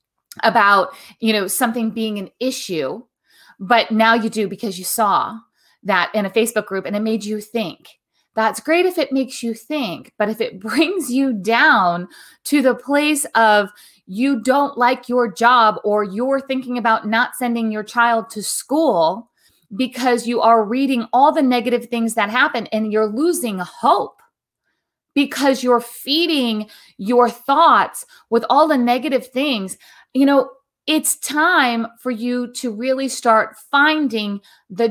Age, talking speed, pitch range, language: 30-49, 155 wpm, 215-265 Hz, English